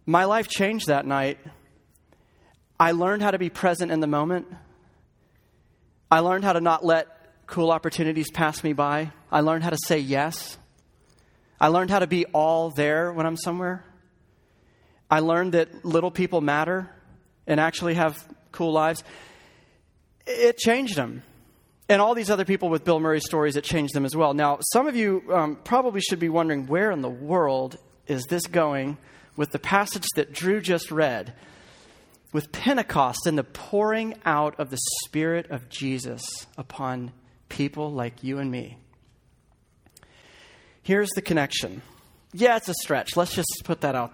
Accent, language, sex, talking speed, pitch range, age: American, English, male, 165 wpm, 140-180 Hz, 30-49